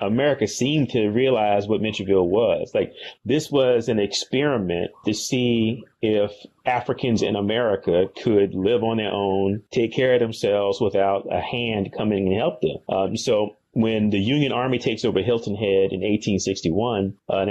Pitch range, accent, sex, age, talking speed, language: 100-125 Hz, American, male, 30-49, 160 wpm, English